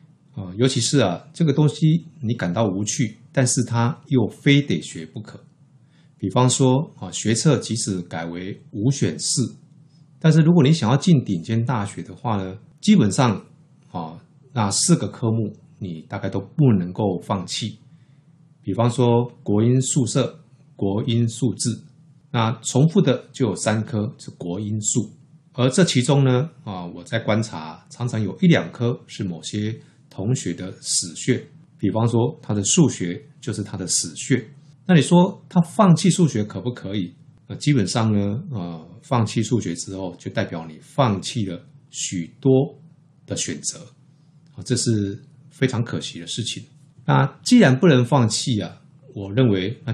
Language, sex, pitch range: Chinese, male, 105-150 Hz